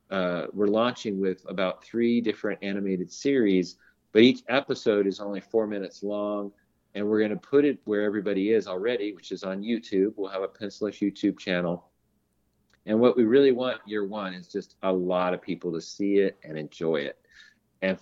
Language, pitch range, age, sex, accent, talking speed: English, 95-110 Hz, 40-59, male, American, 190 wpm